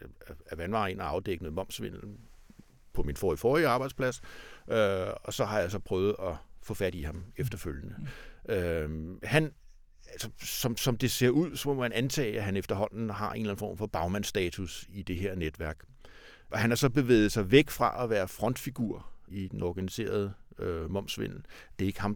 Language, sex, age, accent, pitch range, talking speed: Danish, male, 60-79, native, 95-130 Hz, 190 wpm